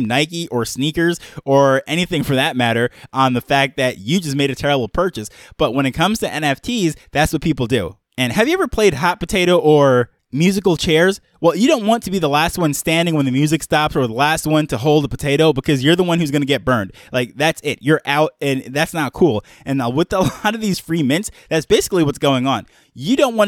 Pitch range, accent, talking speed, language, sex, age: 135-170 Hz, American, 245 wpm, English, male, 20-39